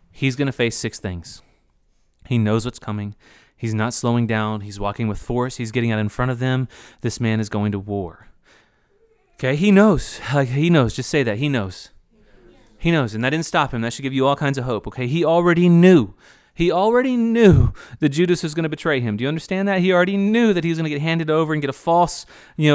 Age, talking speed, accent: 30-49, 235 wpm, American